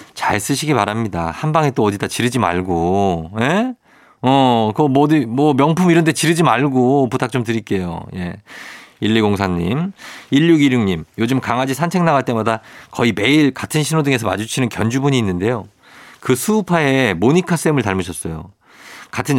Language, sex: Korean, male